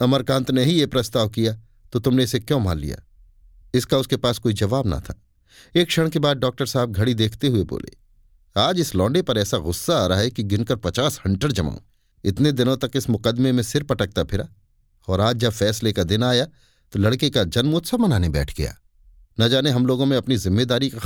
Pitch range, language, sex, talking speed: 100-135 Hz, Hindi, male, 210 wpm